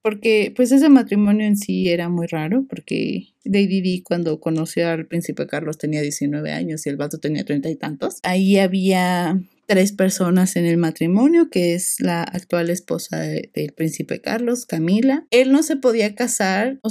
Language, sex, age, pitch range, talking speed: Spanish, female, 30-49, 180-245 Hz, 170 wpm